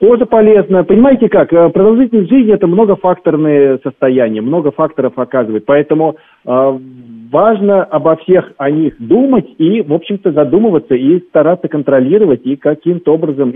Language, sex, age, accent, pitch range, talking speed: Russian, male, 40-59, native, 120-155 Hz, 135 wpm